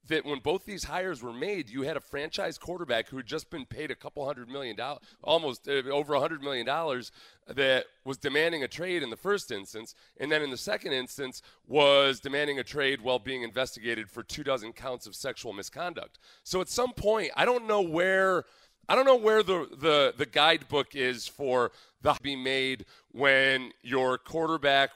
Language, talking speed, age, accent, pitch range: English, 195 wpm, 40-59, American, 115-145 Hz